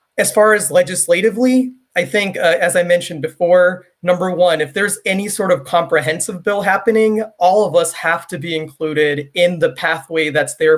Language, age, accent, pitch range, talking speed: English, 20-39, American, 150-180 Hz, 185 wpm